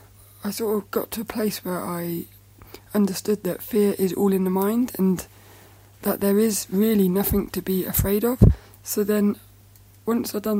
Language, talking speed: English, 180 wpm